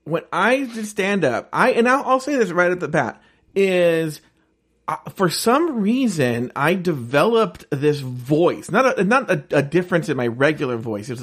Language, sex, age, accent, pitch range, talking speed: English, male, 40-59, American, 145-200 Hz, 185 wpm